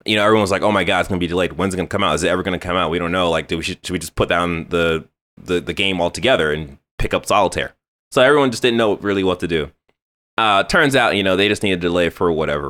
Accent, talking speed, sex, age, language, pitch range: American, 320 wpm, male, 20-39, English, 80-105 Hz